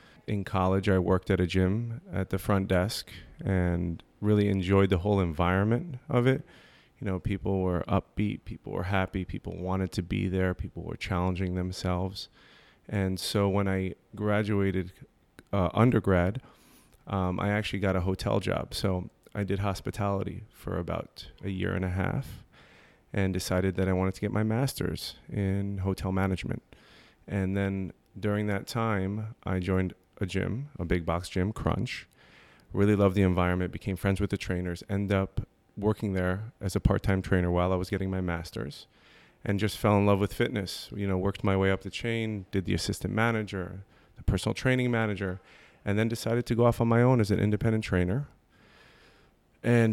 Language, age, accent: English, 30-49, American